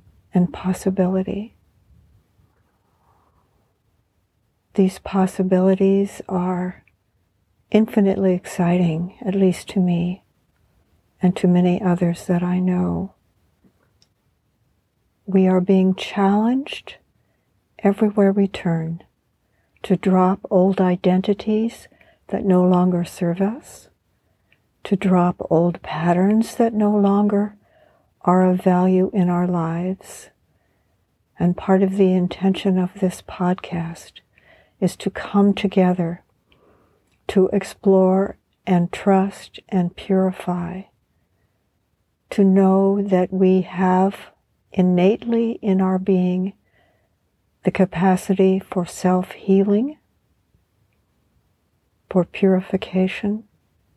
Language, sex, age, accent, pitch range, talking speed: English, female, 60-79, American, 175-195 Hz, 90 wpm